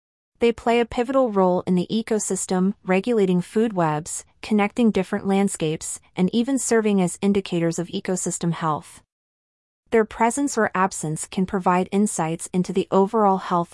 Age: 30-49